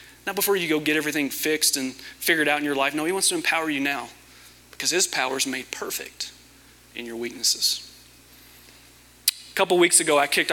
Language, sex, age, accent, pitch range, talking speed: English, male, 30-49, American, 130-170 Hz, 200 wpm